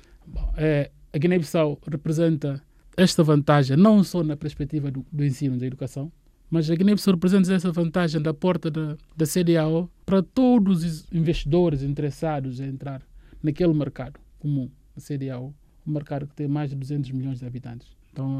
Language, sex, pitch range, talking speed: Portuguese, male, 135-165 Hz, 165 wpm